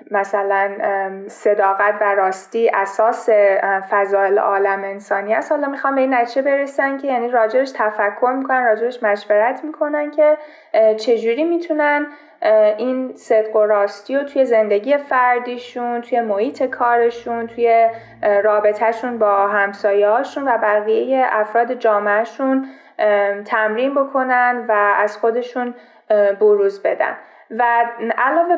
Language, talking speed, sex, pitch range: Persian, 115 wpm, female, 205-255 Hz